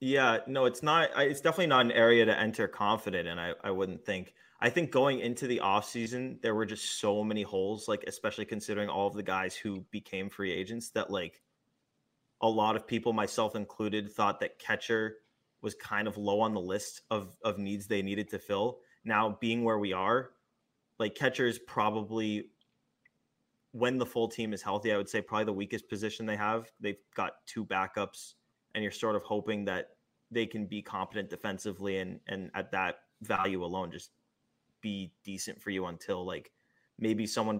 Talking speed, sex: 190 wpm, male